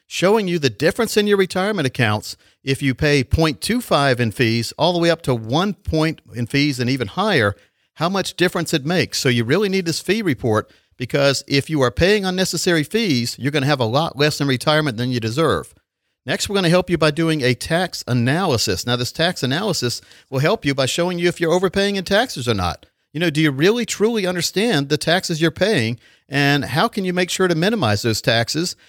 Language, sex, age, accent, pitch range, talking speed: English, male, 50-69, American, 125-175 Hz, 220 wpm